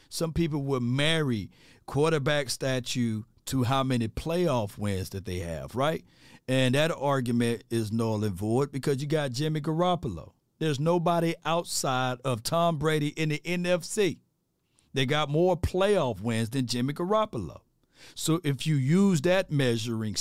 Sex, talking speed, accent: male, 150 wpm, American